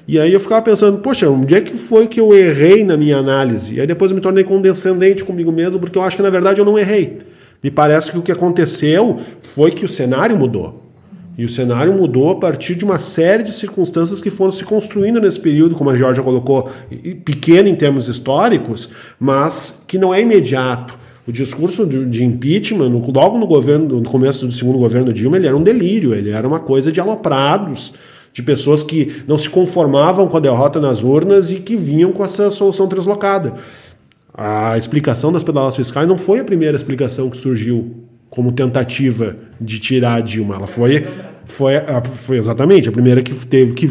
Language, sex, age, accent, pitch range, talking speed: Portuguese, male, 40-59, Brazilian, 130-185 Hz, 195 wpm